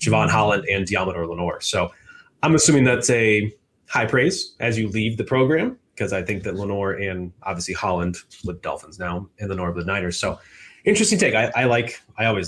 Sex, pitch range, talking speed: male, 100-125 Hz, 195 wpm